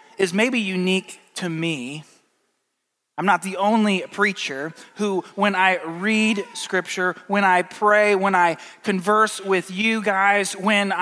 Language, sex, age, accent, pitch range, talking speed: English, male, 20-39, American, 170-210 Hz, 135 wpm